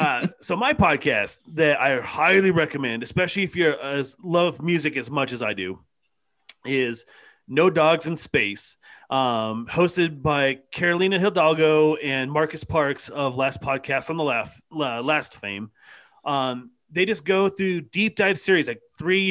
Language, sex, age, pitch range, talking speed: English, male, 30-49, 135-170 Hz, 160 wpm